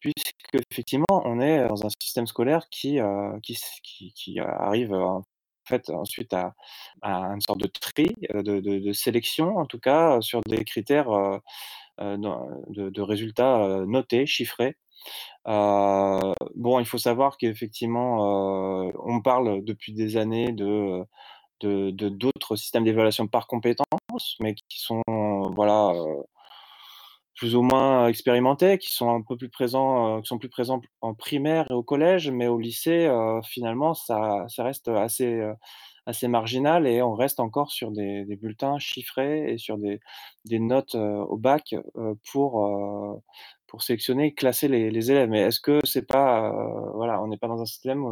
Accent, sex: French, male